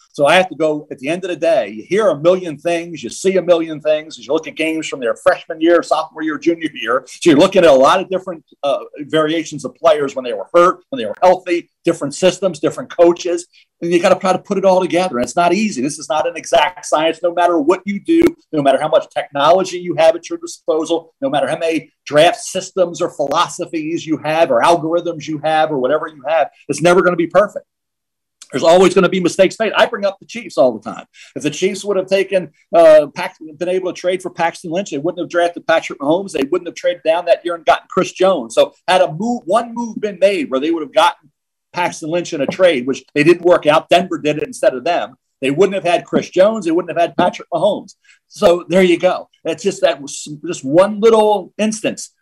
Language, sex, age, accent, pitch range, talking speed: English, male, 40-59, American, 165-210 Hz, 250 wpm